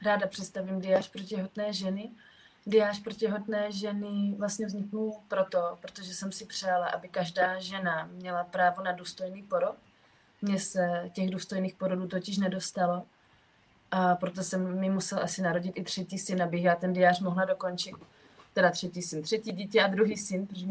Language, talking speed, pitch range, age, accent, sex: Czech, 165 wpm, 180-195 Hz, 20-39, native, female